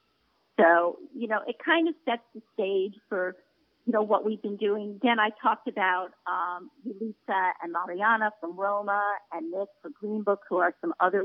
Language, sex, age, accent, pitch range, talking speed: English, female, 50-69, American, 195-260 Hz, 185 wpm